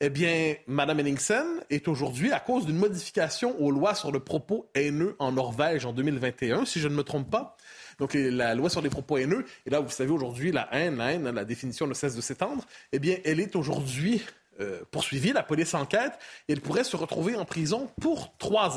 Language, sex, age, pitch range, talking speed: French, male, 30-49, 140-205 Hz, 215 wpm